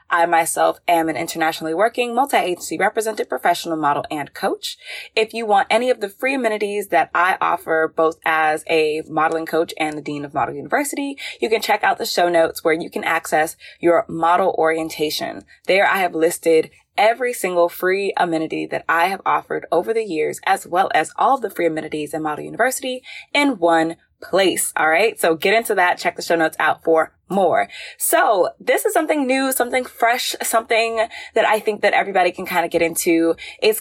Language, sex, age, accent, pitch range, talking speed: English, female, 20-39, American, 165-245 Hz, 190 wpm